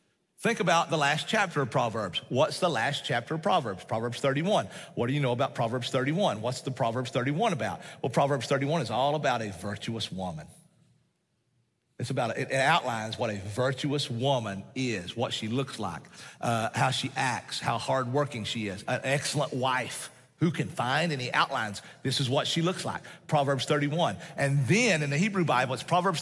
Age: 40-59